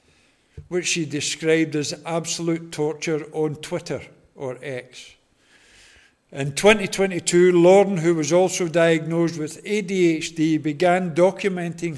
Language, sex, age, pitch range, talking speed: English, male, 60-79, 145-175 Hz, 105 wpm